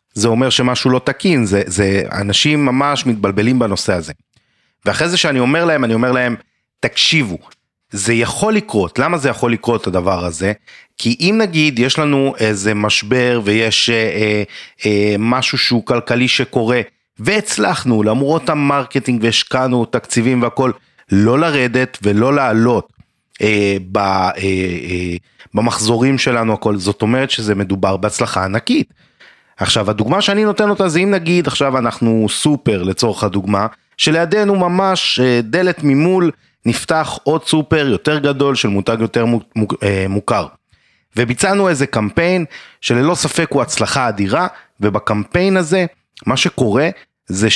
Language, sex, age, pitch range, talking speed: Hebrew, male, 30-49, 105-145 Hz, 135 wpm